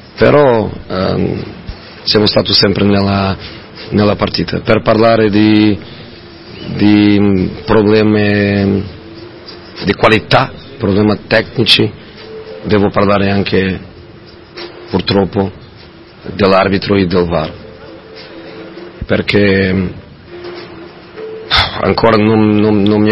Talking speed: 80 wpm